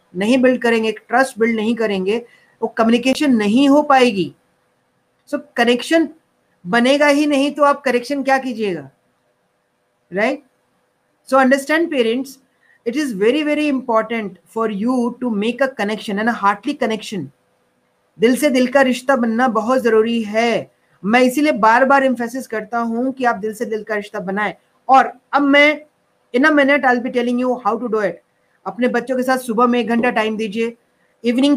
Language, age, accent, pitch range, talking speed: Hindi, 40-59, native, 225-260 Hz, 150 wpm